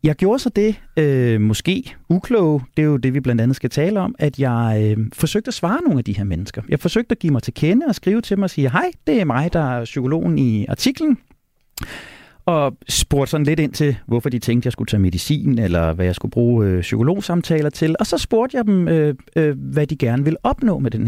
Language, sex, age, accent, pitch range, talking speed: Danish, male, 30-49, native, 105-160 Hz, 230 wpm